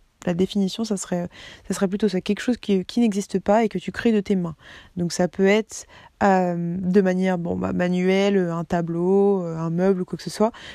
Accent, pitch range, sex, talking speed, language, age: French, 180-205 Hz, female, 205 wpm, French, 20-39